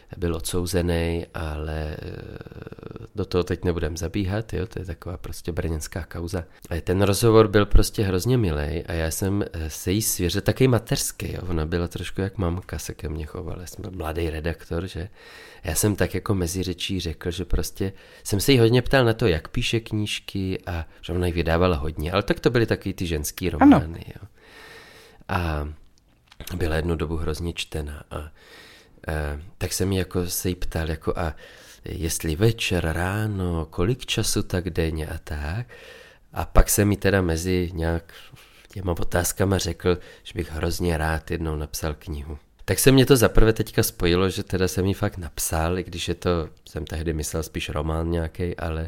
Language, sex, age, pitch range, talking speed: Czech, male, 30-49, 80-100 Hz, 180 wpm